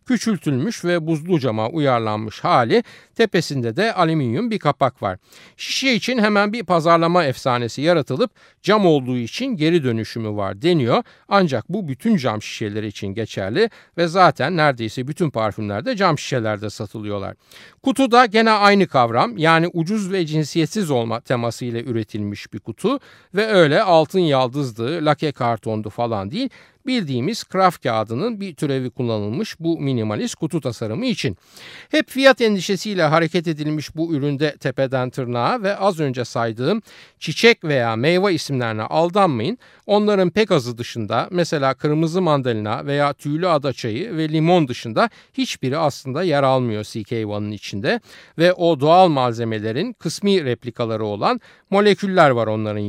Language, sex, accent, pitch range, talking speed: Turkish, male, native, 120-185 Hz, 135 wpm